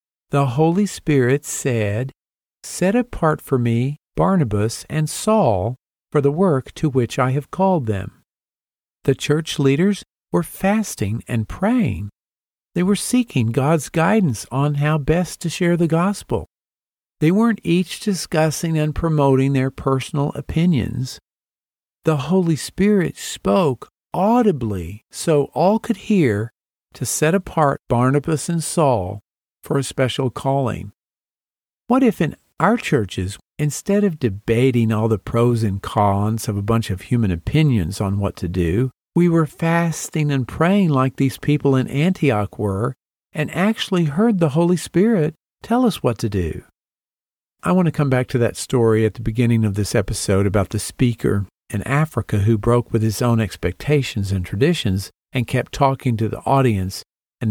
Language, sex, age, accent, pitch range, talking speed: English, male, 50-69, American, 110-165 Hz, 150 wpm